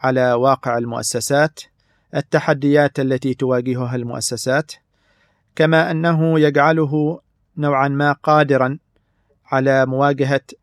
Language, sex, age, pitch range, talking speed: Arabic, male, 40-59, 125-150 Hz, 85 wpm